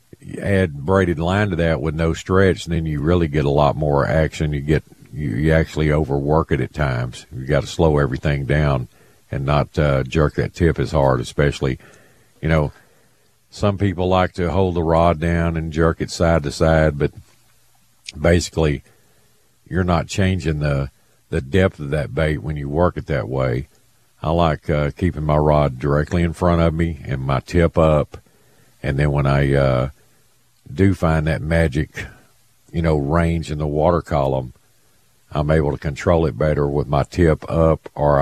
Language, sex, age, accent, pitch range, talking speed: English, male, 50-69, American, 70-85 Hz, 180 wpm